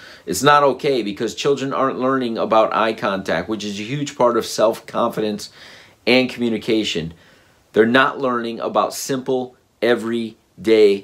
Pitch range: 95-110 Hz